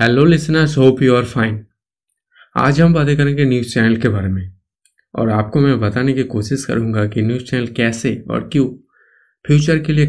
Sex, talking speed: male, 180 wpm